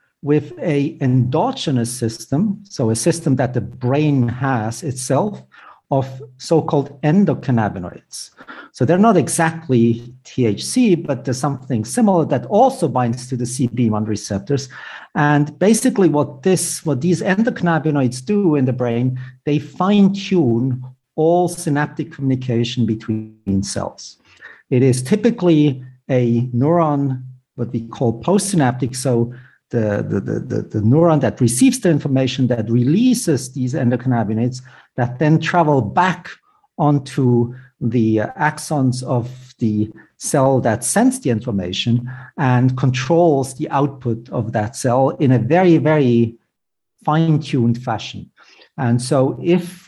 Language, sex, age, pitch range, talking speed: English, male, 50-69, 120-165 Hz, 125 wpm